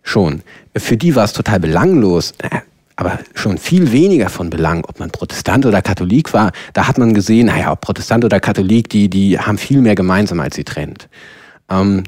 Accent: German